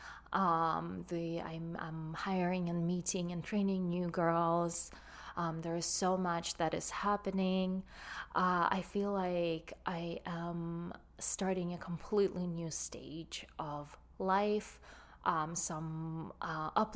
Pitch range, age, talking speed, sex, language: 170-220 Hz, 20-39, 125 wpm, female, English